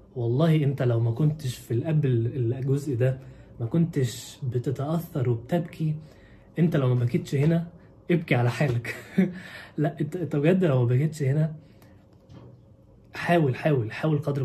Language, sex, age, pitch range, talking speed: Arabic, male, 20-39, 120-150 Hz, 135 wpm